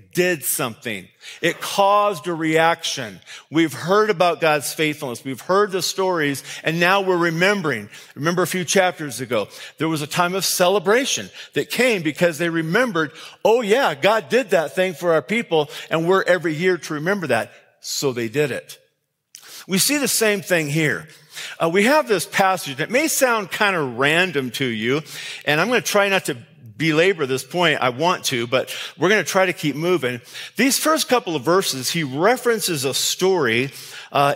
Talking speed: 185 wpm